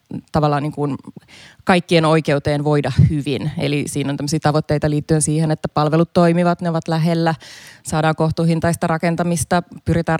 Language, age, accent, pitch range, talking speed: Finnish, 20-39, native, 150-170 Hz, 135 wpm